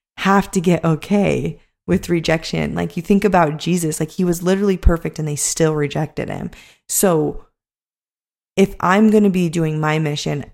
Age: 20-39